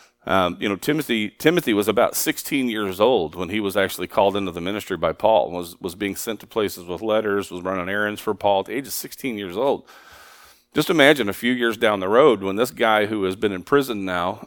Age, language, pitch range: 40-59, English, 90-120 Hz